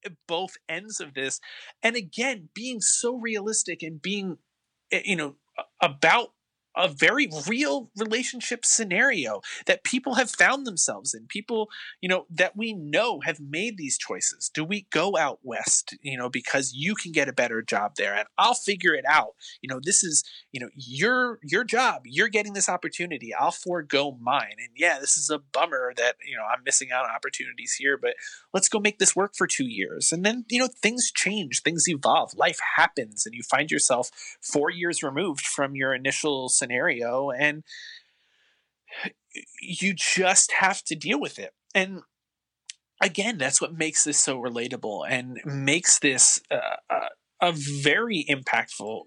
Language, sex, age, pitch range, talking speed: English, male, 30-49, 145-215 Hz, 170 wpm